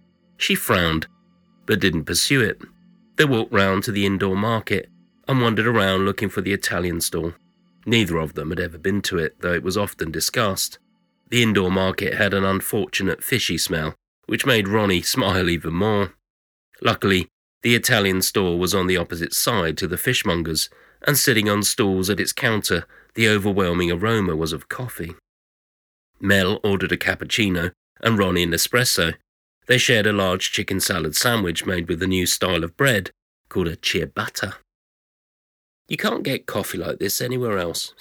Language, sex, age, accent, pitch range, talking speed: English, male, 30-49, British, 90-120 Hz, 165 wpm